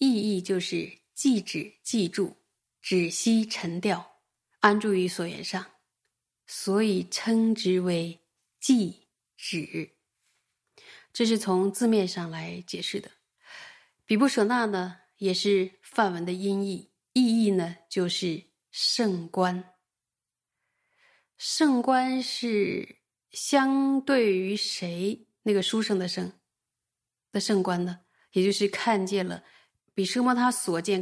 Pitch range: 180-215 Hz